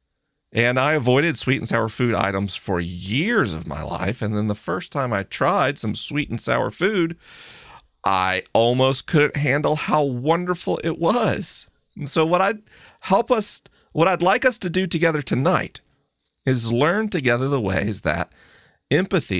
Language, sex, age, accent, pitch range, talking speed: English, male, 40-59, American, 105-155 Hz, 160 wpm